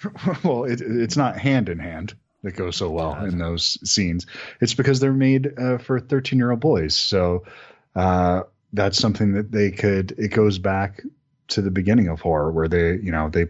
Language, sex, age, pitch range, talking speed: English, male, 30-49, 85-105 Hz, 190 wpm